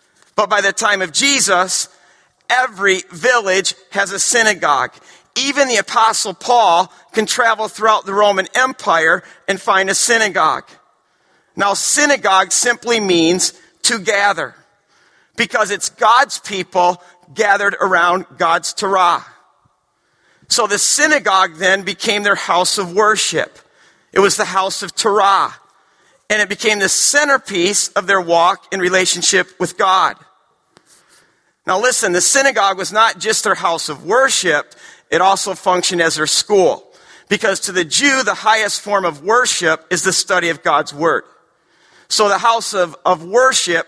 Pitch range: 170-215 Hz